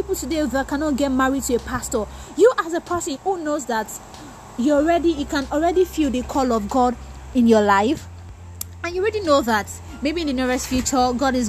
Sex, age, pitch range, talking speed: female, 20-39, 235-330 Hz, 210 wpm